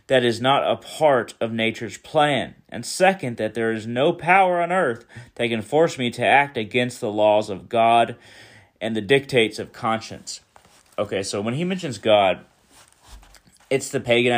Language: English